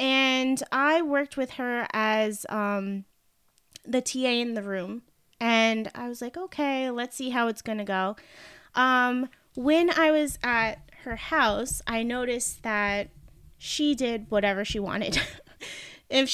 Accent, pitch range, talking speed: American, 225-280 Hz, 145 wpm